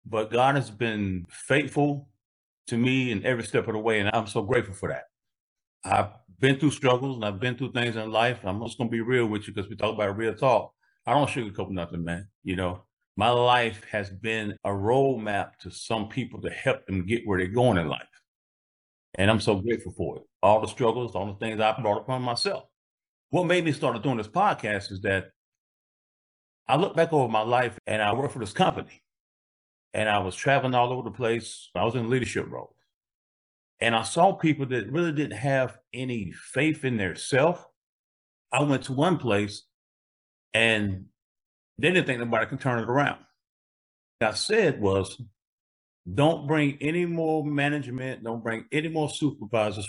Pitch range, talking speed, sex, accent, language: 105-130 Hz, 195 wpm, male, American, English